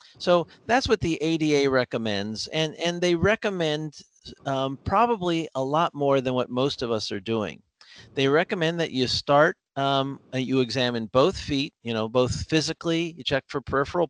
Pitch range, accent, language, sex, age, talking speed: 125-165 Hz, American, English, male, 50-69, 175 wpm